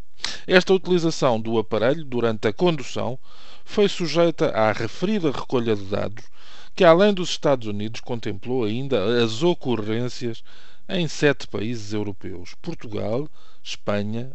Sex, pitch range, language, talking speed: male, 110-150 Hz, Portuguese, 120 wpm